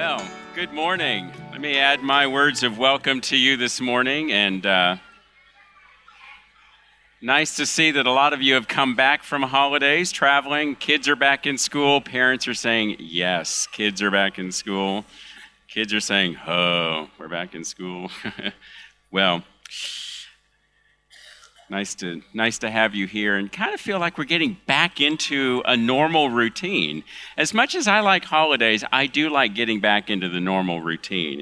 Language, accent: English, American